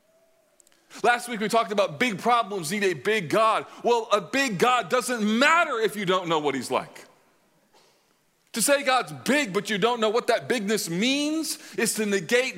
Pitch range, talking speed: 175-225 Hz, 185 wpm